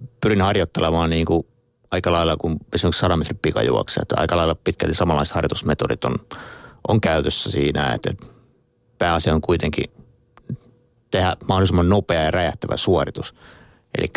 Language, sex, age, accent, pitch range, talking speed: Finnish, male, 30-49, native, 80-100 Hz, 135 wpm